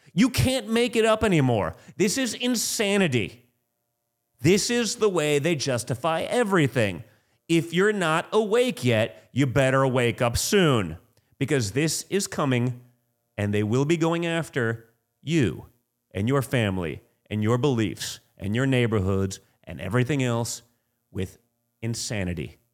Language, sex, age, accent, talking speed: English, male, 30-49, American, 135 wpm